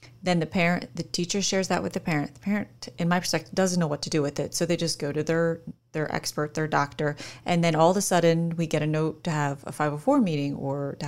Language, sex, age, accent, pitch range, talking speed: English, female, 30-49, American, 165-215 Hz, 265 wpm